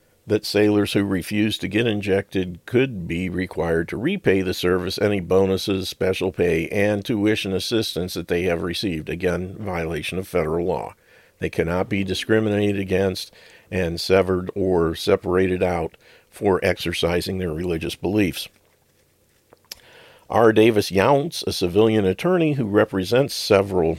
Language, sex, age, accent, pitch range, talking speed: English, male, 50-69, American, 90-100 Hz, 135 wpm